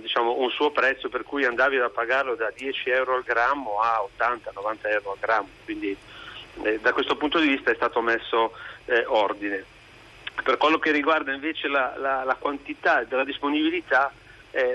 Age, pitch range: 40-59, 115-180 Hz